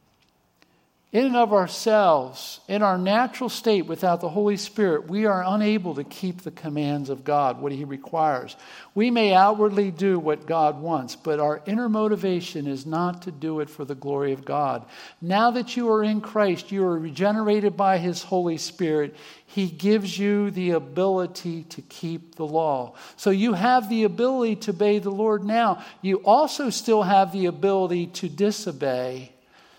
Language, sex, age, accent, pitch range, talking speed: English, male, 50-69, American, 150-205 Hz, 170 wpm